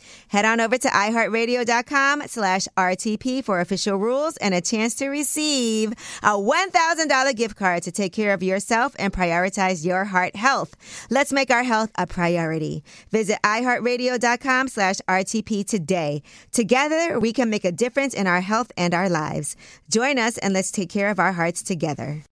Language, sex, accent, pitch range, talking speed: English, female, American, 190-255 Hz, 165 wpm